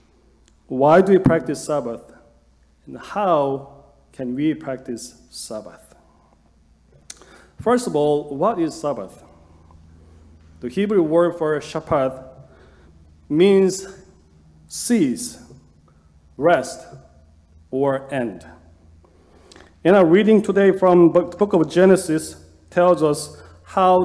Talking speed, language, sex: 95 wpm, English, male